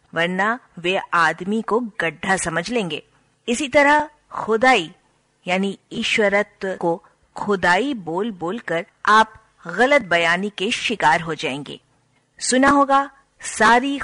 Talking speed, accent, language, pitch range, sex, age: 110 wpm, native, Hindi, 170-230 Hz, female, 50-69